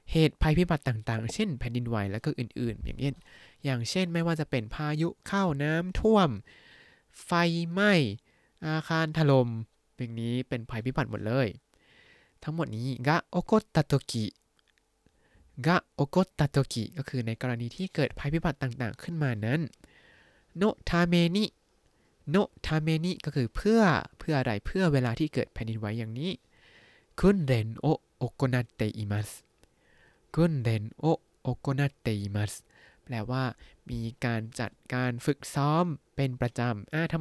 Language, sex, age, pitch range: Thai, male, 20-39, 115-155 Hz